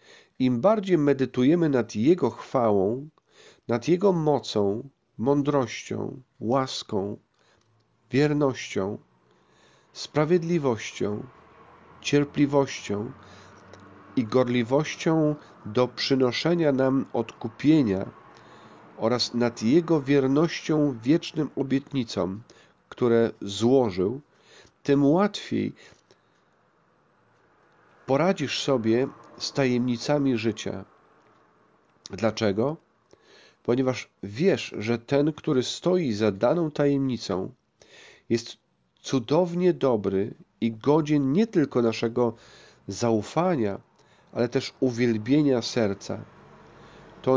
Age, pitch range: 40-59, 115-150 Hz